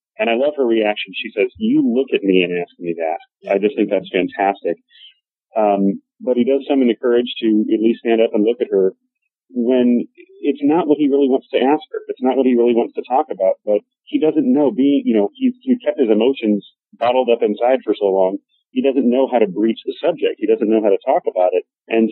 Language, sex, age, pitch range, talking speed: English, male, 40-59, 105-160 Hz, 245 wpm